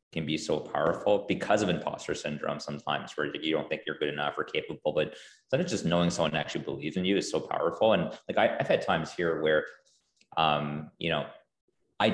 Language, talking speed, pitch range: English, 215 wpm, 80-105 Hz